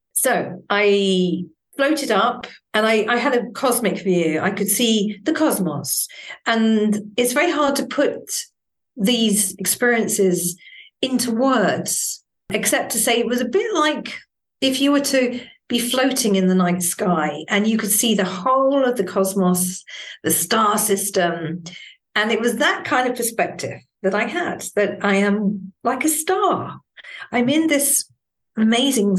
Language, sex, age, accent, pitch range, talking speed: English, female, 50-69, British, 175-240 Hz, 155 wpm